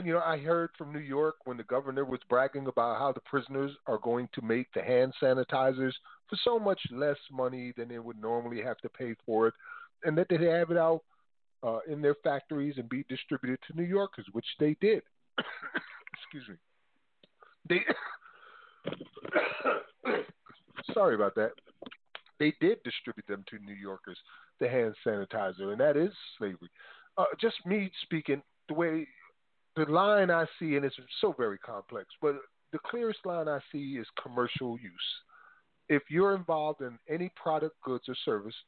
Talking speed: 170 wpm